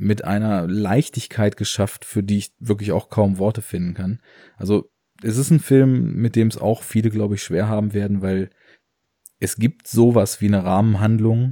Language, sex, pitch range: German, male, 95-105 Hz